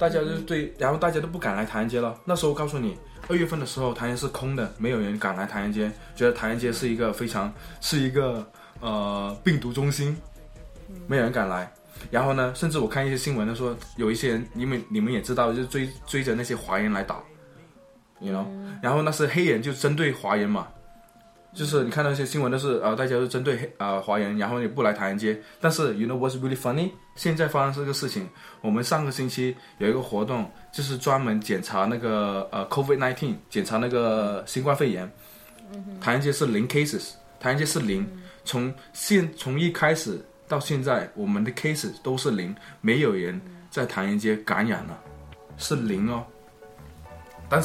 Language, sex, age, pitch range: Chinese, male, 20-39, 115-155 Hz